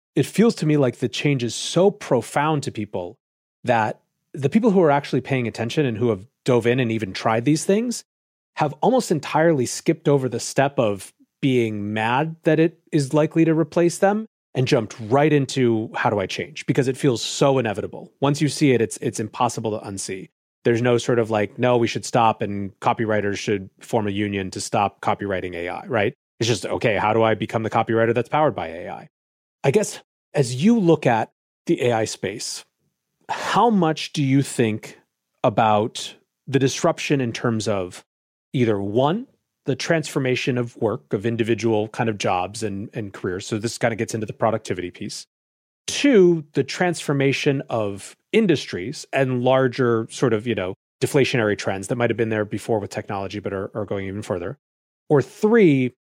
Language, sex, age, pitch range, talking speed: English, male, 30-49, 110-145 Hz, 185 wpm